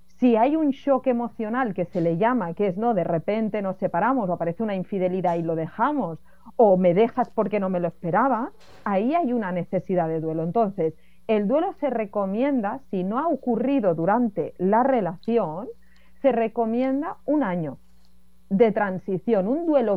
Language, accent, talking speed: Spanish, Spanish, 170 wpm